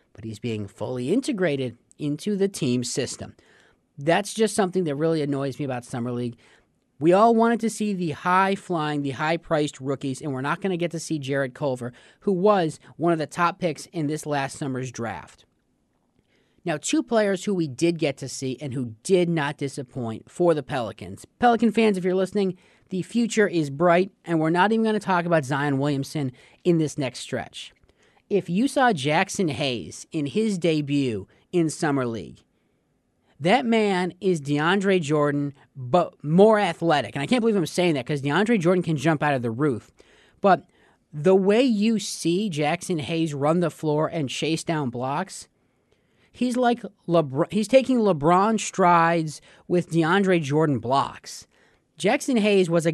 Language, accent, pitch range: English, American, 140-190 Hz